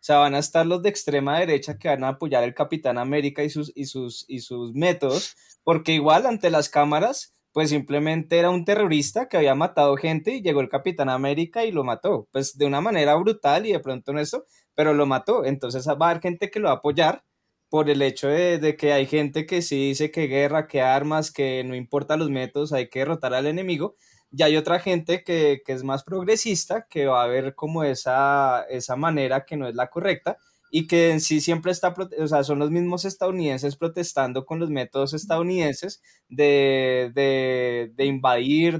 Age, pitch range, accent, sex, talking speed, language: 20-39, 135-165 Hz, Colombian, male, 210 wpm, Spanish